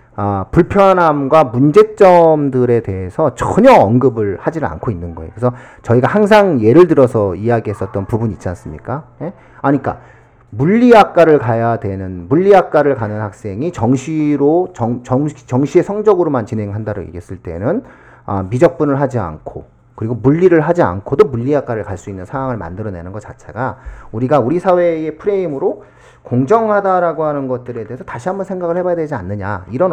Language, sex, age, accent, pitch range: Korean, male, 40-59, native, 110-160 Hz